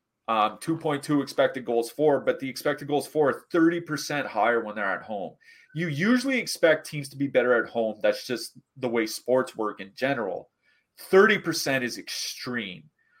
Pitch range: 115-145 Hz